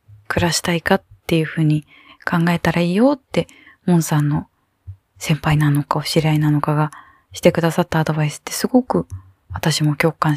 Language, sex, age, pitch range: Japanese, female, 20-39, 150-185 Hz